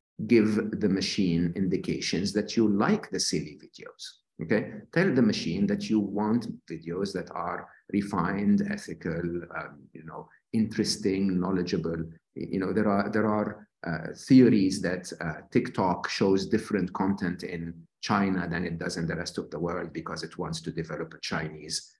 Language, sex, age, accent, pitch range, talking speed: English, male, 50-69, Italian, 90-125 Hz, 160 wpm